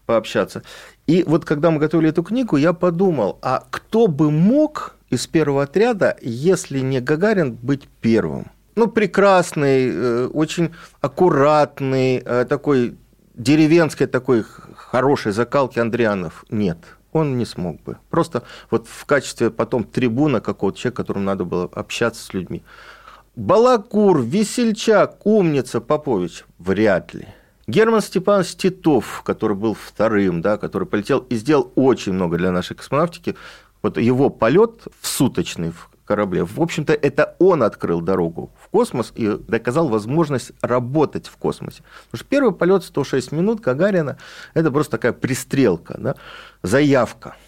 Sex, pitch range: male, 115-175 Hz